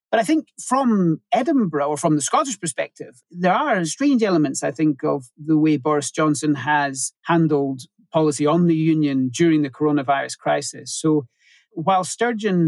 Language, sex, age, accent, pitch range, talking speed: English, male, 40-59, British, 140-165 Hz, 160 wpm